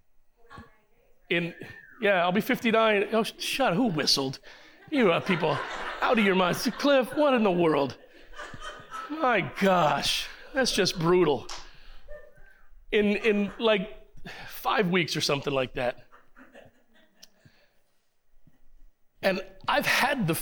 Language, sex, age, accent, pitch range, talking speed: English, male, 40-59, American, 165-225 Hz, 120 wpm